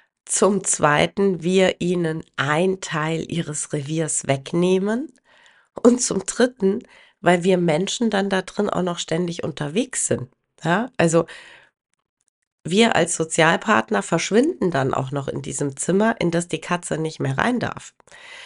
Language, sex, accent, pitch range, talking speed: German, female, German, 160-195 Hz, 140 wpm